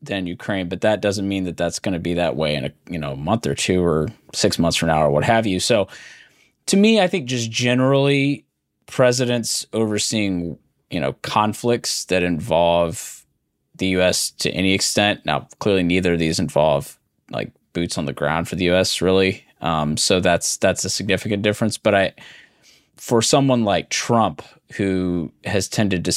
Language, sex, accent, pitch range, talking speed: English, male, American, 90-115 Hz, 185 wpm